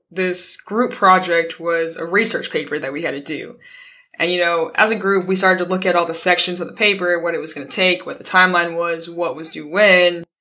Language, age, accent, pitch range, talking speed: English, 20-39, American, 170-200 Hz, 250 wpm